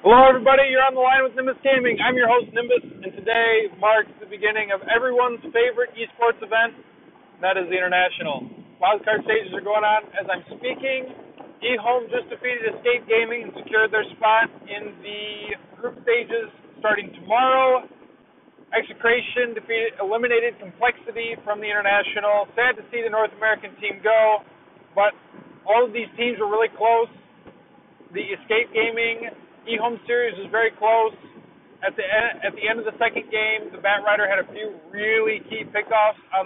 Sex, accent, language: male, American, English